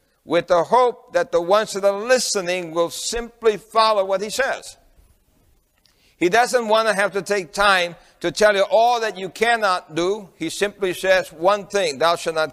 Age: 60-79